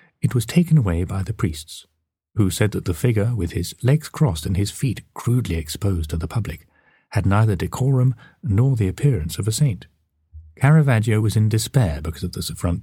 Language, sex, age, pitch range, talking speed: English, male, 40-59, 85-125 Hz, 190 wpm